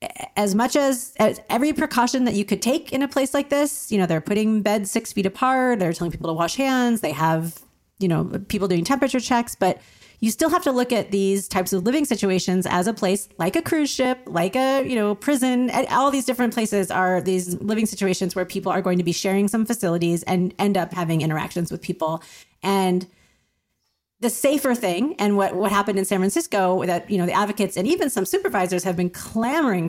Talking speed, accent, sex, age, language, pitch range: 215 wpm, American, female, 30-49, English, 180-225 Hz